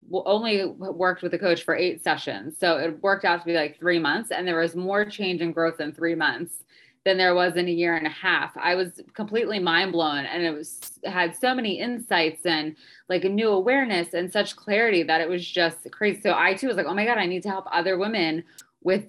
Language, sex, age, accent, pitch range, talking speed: English, female, 20-39, American, 170-210 Hz, 240 wpm